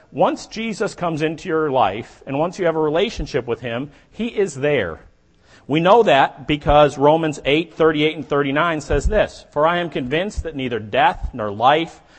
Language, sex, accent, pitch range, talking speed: English, male, American, 120-170 Hz, 180 wpm